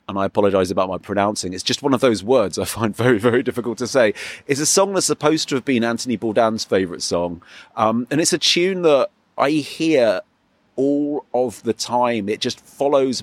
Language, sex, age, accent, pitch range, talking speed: English, male, 30-49, British, 105-140 Hz, 210 wpm